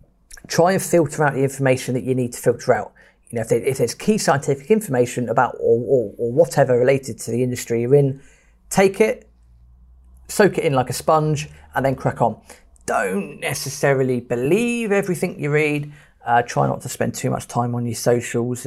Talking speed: 190 wpm